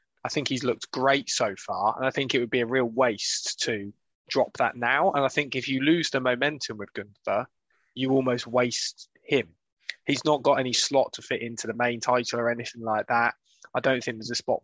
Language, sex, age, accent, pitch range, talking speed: English, male, 20-39, British, 115-135 Hz, 225 wpm